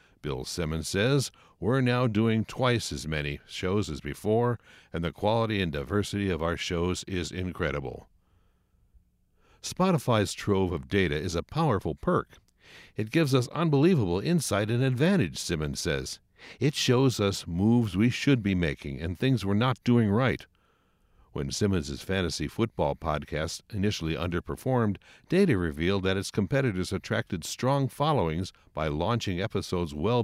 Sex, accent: male, American